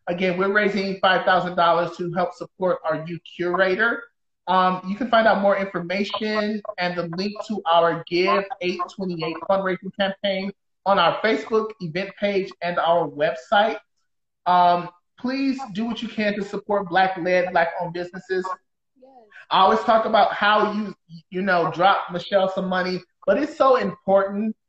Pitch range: 175-205 Hz